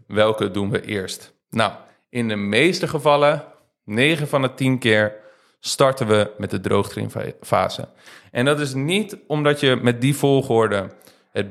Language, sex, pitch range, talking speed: Dutch, male, 115-150 Hz, 150 wpm